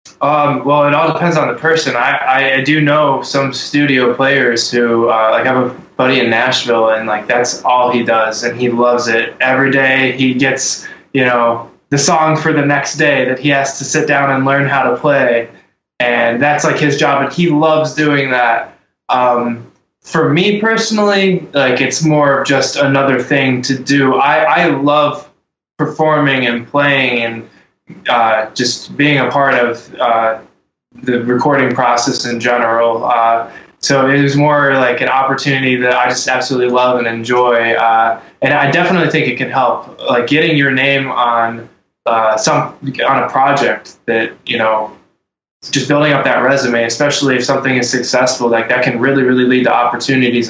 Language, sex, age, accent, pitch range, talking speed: English, male, 20-39, American, 120-145 Hz, 180 wpm